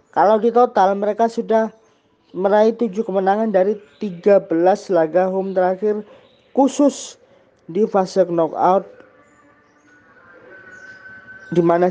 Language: Indonesian